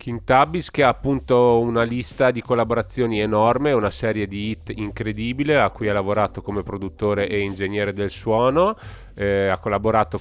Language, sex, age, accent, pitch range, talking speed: Italian, male, 30-49, native, 95-110 Hz, 160 wpm